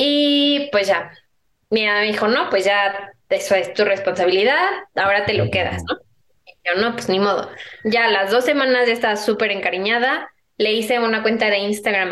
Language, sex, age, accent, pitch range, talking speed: Spanish, female, 20-39, Mexican, 195-245 Hz, 190 wpm